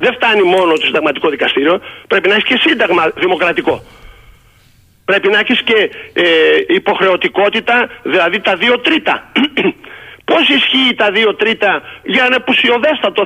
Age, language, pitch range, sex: 50-69, Greek, 210-330 Hz, male